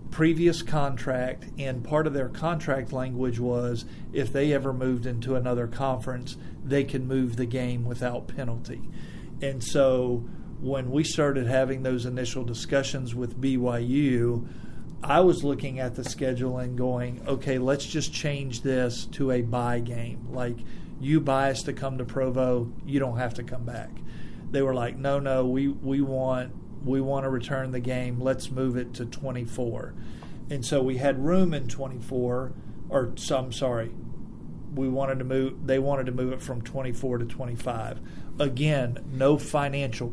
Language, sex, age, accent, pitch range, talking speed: English, male, 50-69, American, 125-140 Hz, 165 wpm